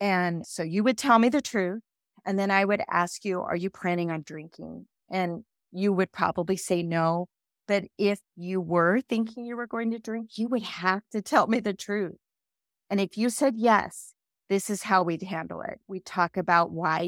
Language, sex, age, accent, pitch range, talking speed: English, female, 30-49, American, 170-210 Hz, 205 wpm